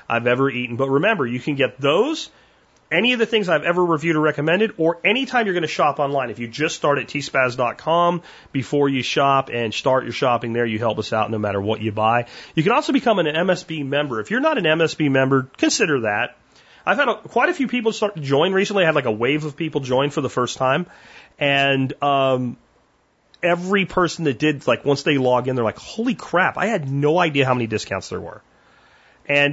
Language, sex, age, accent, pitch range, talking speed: English, male, 30-49, American, 115-160 Hz, 225 wpm